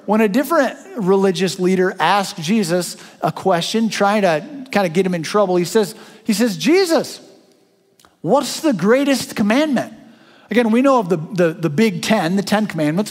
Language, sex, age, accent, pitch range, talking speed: English, male, 50-69, American, 160-235 Hz, 175 wpm